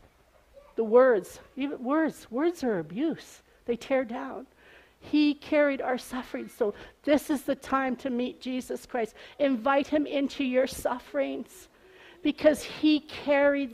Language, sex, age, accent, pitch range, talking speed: English, female, 50-69, American, 250-295 Hz, 130 wpm